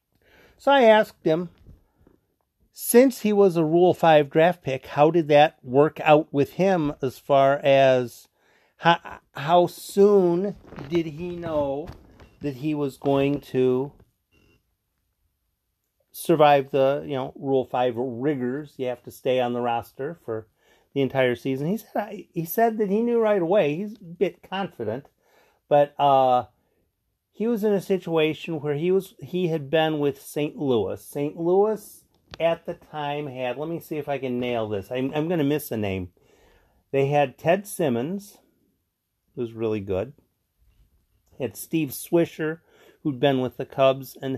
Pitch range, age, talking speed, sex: 125-170 Hz, 40-59, 160 wpm, male